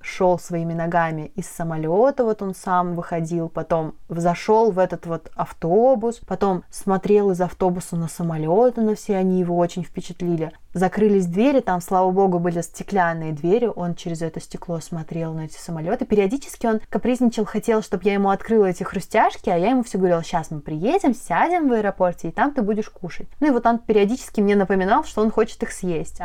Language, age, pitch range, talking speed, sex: Russian, 20-39, 170-215 Hz, 185 wpm, female